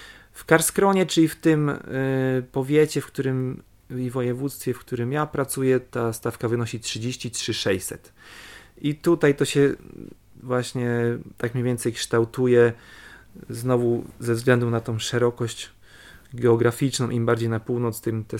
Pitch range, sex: 115-140 Hz, male